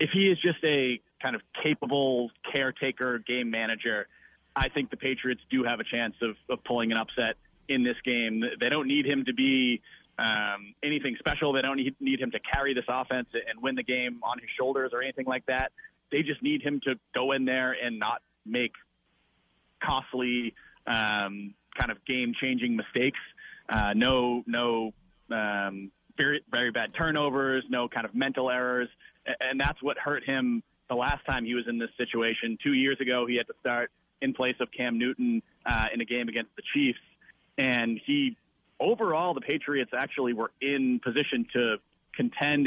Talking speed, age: 180 wpm, 30-49